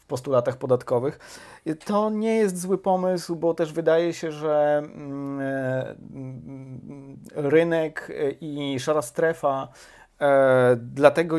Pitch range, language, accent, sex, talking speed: 125-155 Hz, Polish, native, male, 90 wpm